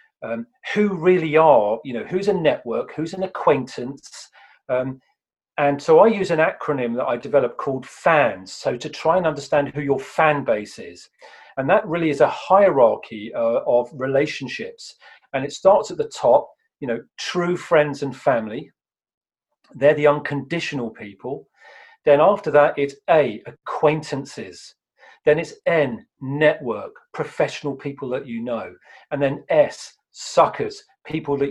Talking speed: 150 wpm